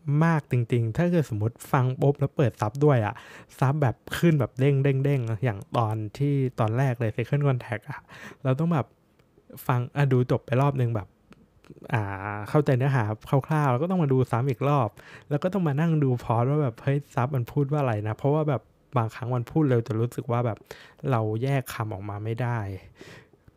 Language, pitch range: Thai, 115-145 Hz